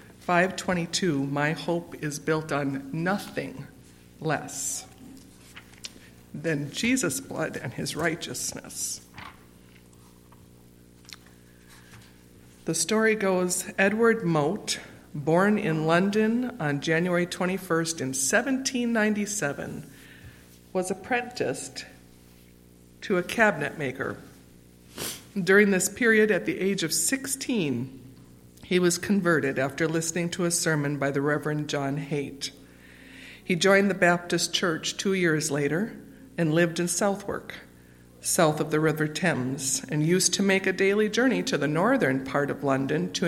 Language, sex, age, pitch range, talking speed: English, female, 50-69, 135-185 Hz, 115 wpm